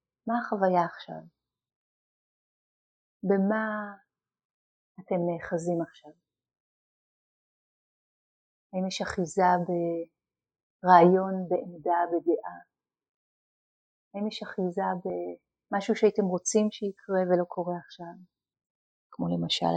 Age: 30-49